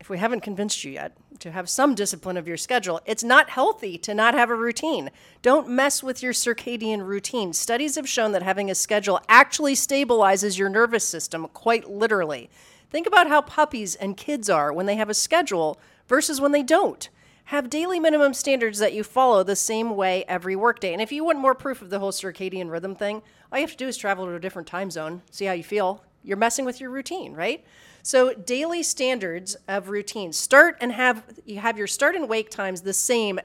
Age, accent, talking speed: 40-59, American, 215 wpm